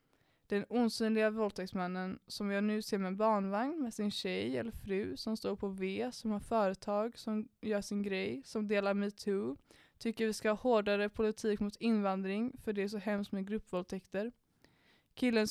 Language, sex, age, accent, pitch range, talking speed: Swedish, female, 20-39, native, 200-220 Hz, 170 wpm